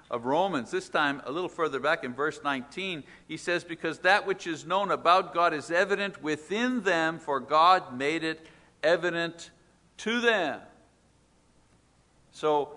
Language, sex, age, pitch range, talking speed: English, male, 60-79, 150-215 Hz, 150 wpm